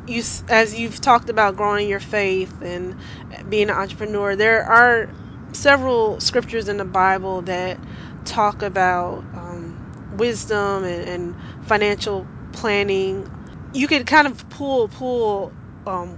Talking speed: 130 wpm